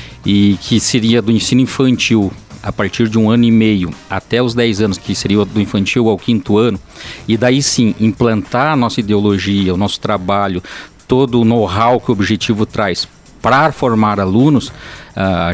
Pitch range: 105-140 Hz